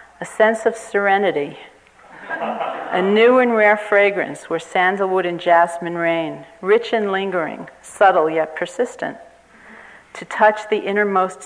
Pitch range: 175-220 Hz